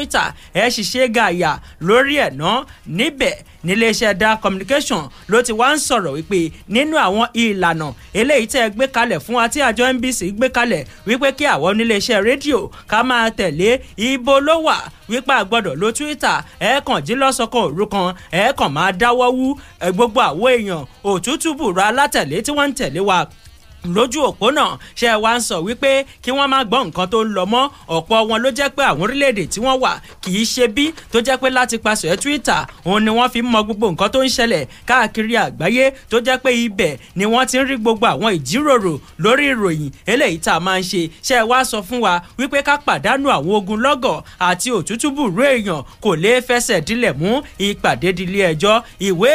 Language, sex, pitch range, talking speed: English, male, 195-260 Hz, 175 wpm